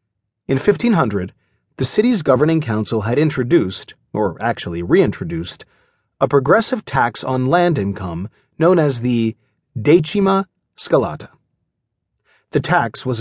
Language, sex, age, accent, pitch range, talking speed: English, male, 30-49, American, 115-180 Hz, 115 wpm